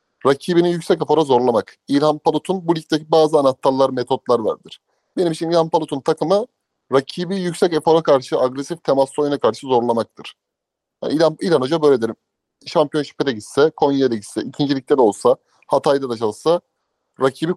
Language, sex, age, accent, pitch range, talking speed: Turkish, male, 30-49, native, 130-160 Hz, 150 wpm